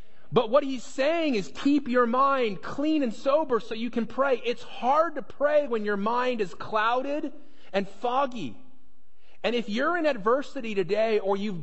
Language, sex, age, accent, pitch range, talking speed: English, male, 30-49, American, 190-250 Hz, 175 wpm